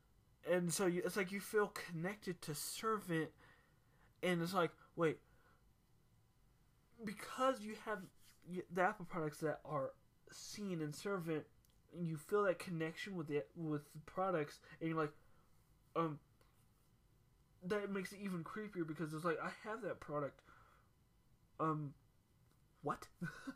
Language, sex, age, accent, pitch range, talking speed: English, male, 20-39, American, 145-180 Hz, 135 wpm